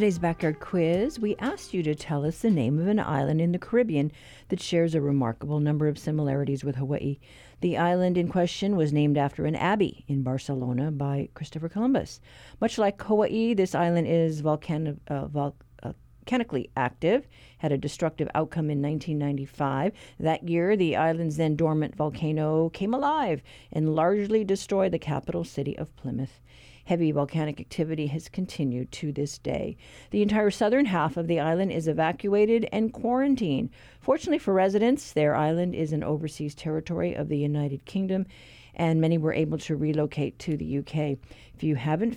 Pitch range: 150-190 Hz